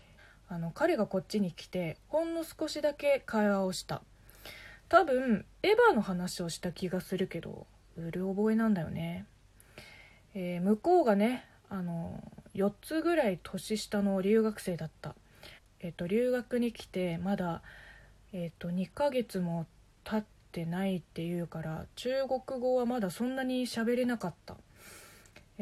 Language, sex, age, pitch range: Japanese, female, 20-39, 180-260 Hz